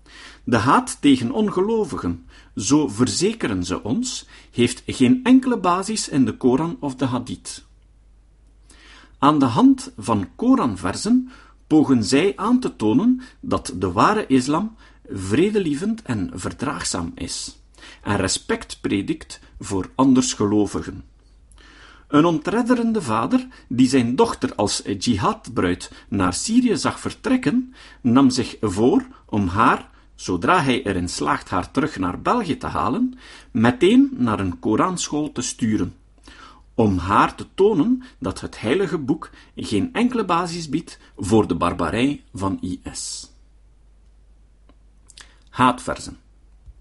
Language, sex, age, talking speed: Dutch, male, 50-69, 120 wpm